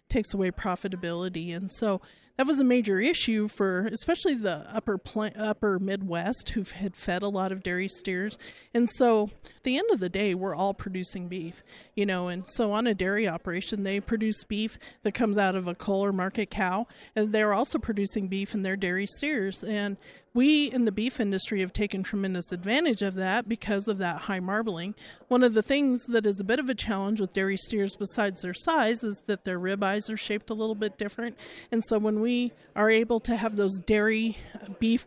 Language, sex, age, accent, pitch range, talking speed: English, male, 40-59, American, 190-225 Hz, 205 wpm